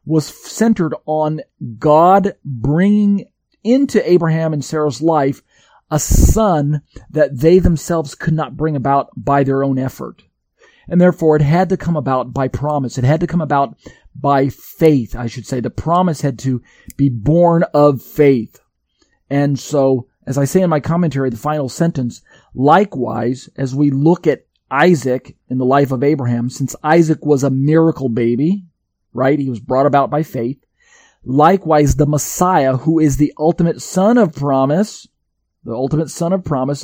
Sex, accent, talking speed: male, American, 165 wpm